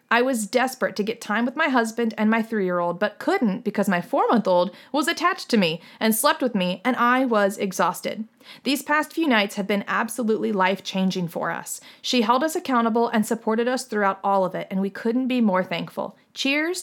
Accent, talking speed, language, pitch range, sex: American, 205 wpm, English, 210-270 Hz, female